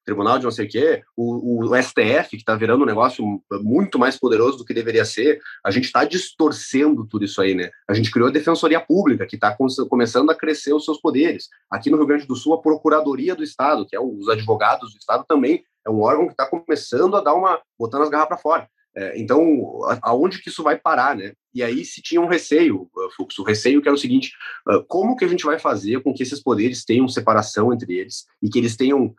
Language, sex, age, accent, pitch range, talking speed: Portuguese, male, 30-49, Brazilian, 120-160 Hz, 235 wpm